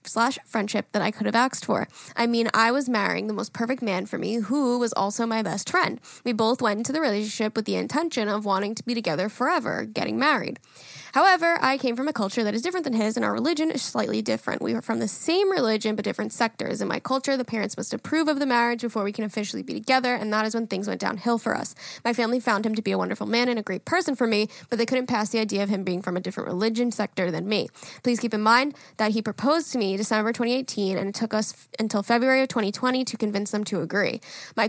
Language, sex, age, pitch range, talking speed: English, female, 10-29, 210-245 Hz, 260 wpm